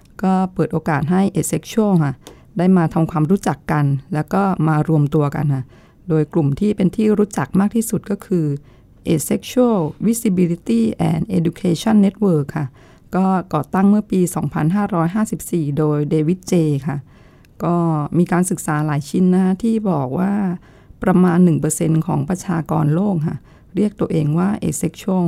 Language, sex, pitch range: Thai, female, 150-190 Hz